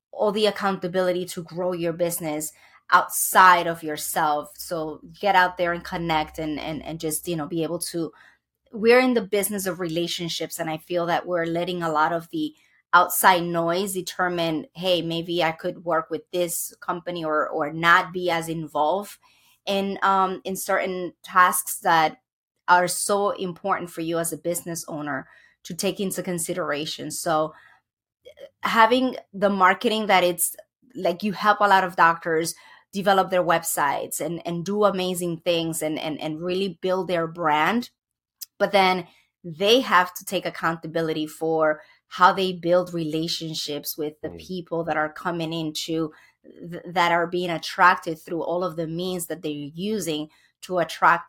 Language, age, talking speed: English, 20-39, 160 wpm